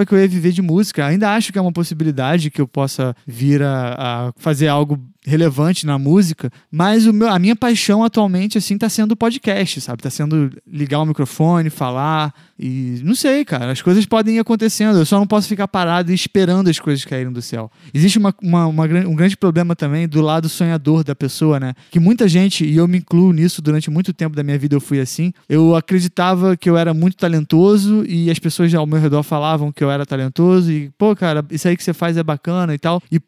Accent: Brazilian